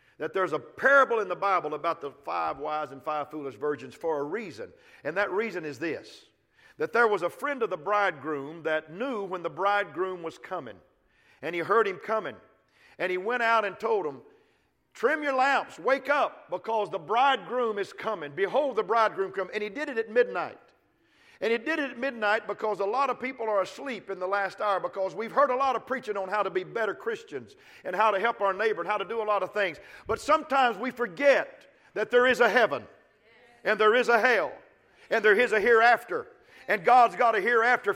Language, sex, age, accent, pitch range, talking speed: English, male, 50-69, American, 200-270 Hz, 220 wpm